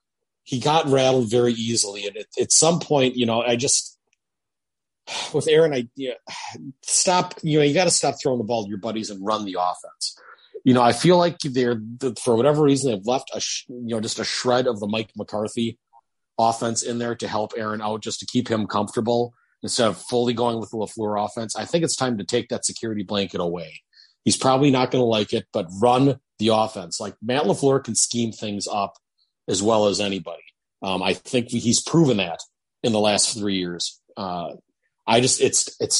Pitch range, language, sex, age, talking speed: 110-140 Hz, English, male, 40-59, 205 wpm